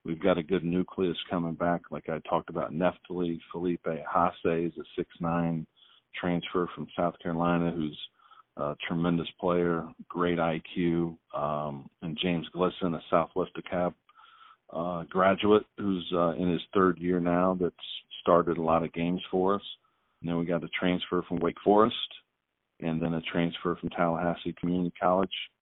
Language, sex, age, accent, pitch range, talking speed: English, male, 40-59, American, 85-90 Hz, 160 wpm